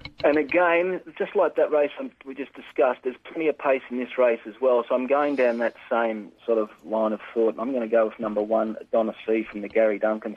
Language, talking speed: English, 245 wpm